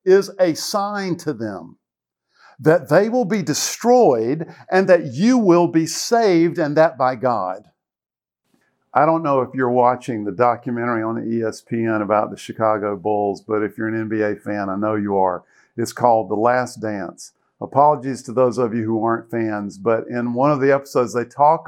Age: 50-69